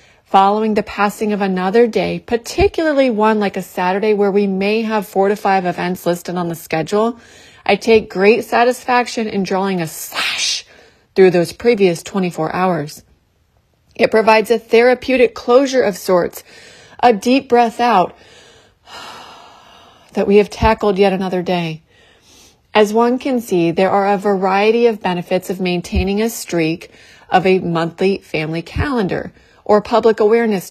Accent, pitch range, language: American, 190-230 Hz, English